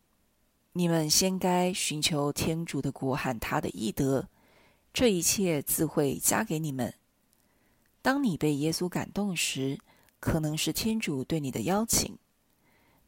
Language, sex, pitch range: Chinese, female, 145-190 Hz